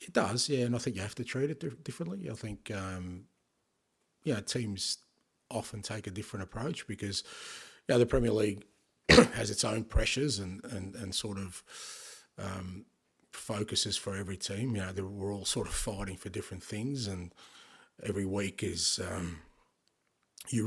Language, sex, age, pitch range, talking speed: English, male, 30-49, 90-105 Hz, 175 wpm